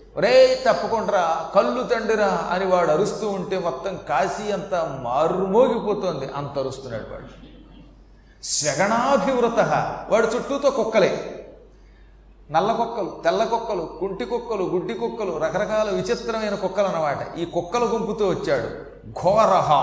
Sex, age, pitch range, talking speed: male, 40-59, 160-225 Hz, 100 wpm